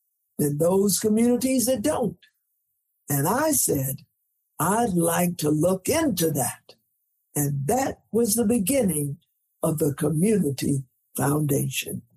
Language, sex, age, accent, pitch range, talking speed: English, male, 60-79, American, 155-230 Hz, 115 wpm